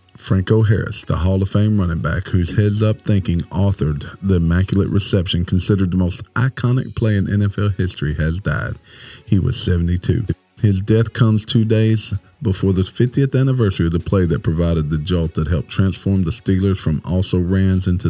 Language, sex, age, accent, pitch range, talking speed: English, male, 40-59, American, 85-110 Hz, 170 wpm